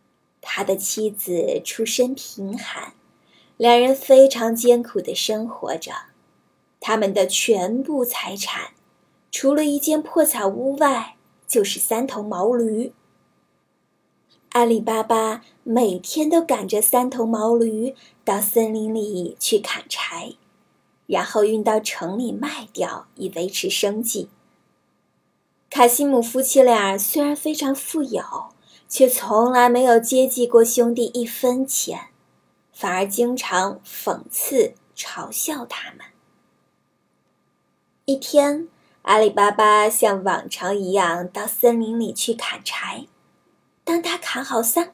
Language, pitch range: Chinese, 215-265 Hz